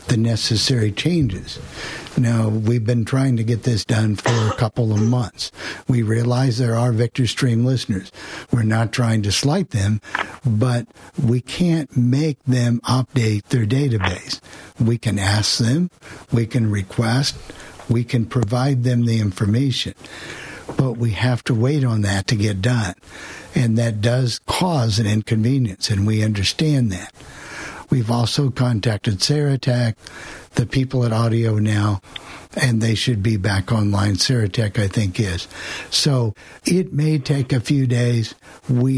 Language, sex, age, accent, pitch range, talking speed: English, male, 60-79, American, 110-130 Hz, 150 wpm